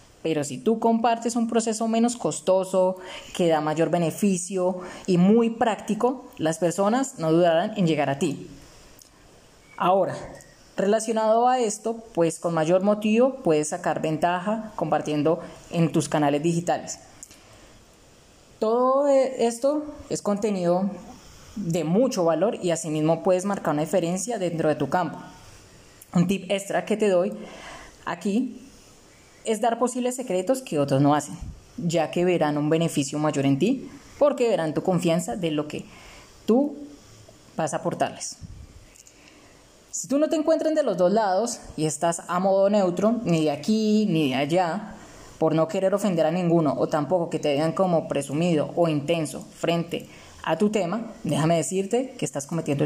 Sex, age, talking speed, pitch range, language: female, 20-39, 150 wpm, 160-220 Hz, Spanish